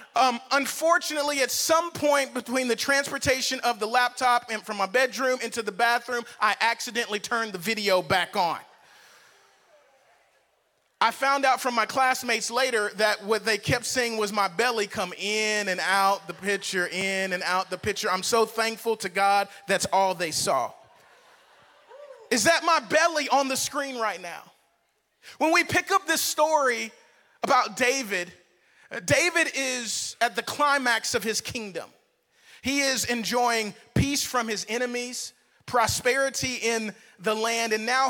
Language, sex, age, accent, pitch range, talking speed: English, male, 30-49, American, 205-265 Hz, 155 wpm